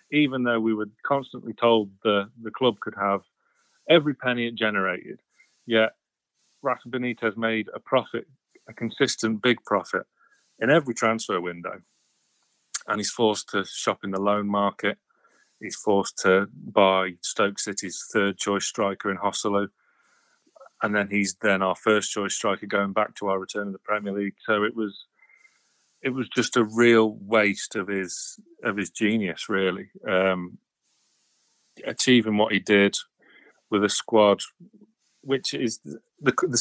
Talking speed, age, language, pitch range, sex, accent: 150 wpm, 30-49, English, 100-125 Hz, male, British